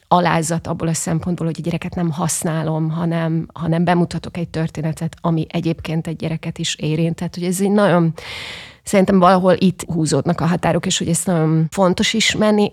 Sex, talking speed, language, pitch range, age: female, 175 wpm, Hungarian, 165-180 Hz, 30-49